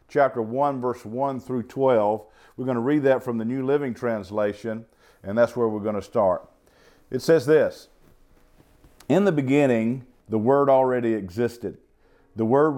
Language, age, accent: English, 50-69, American